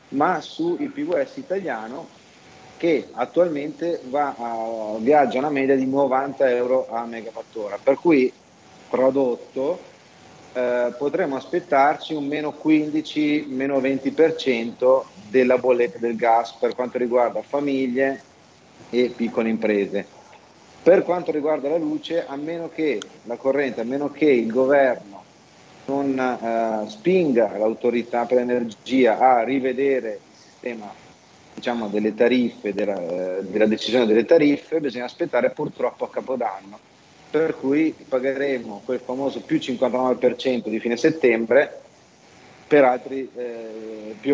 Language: Italian